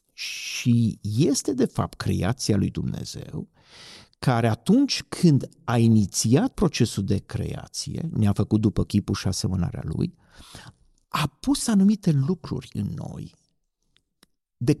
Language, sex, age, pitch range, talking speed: Romanian, male, 50-69, 115-165 Hz, 120 wpm